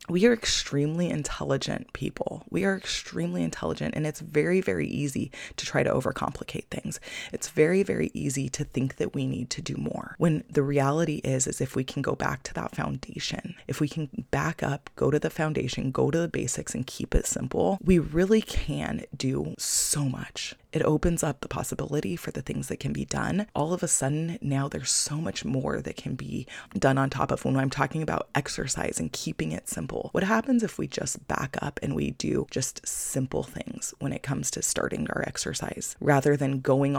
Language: English